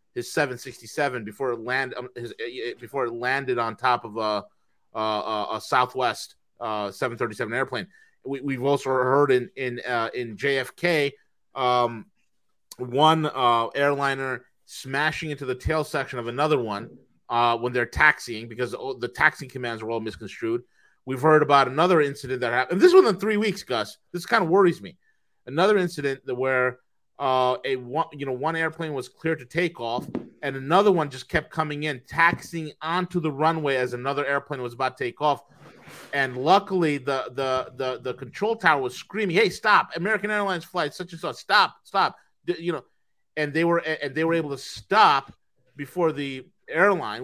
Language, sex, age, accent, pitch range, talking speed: English, male, 30-49, American, 125-160 Hz, 180 wpm